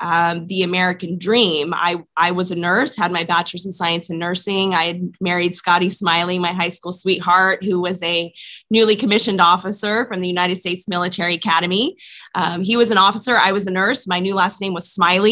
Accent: American